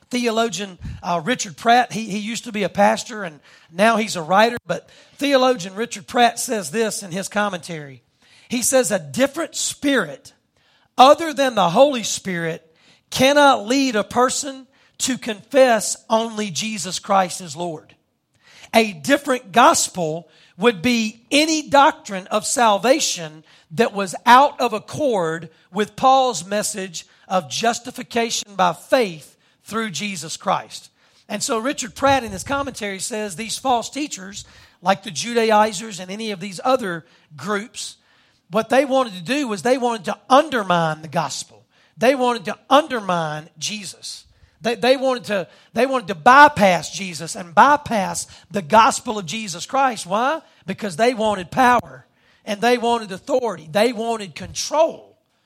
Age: 40-59